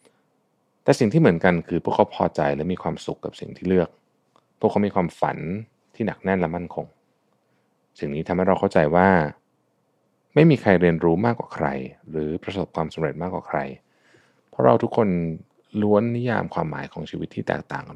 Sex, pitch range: male, 80-100 Hz